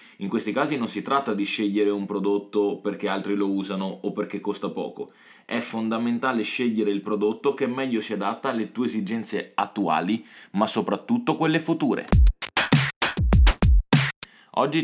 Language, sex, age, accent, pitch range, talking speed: Italian, male, 20-39, native, 100-115 Hz, 145 wpm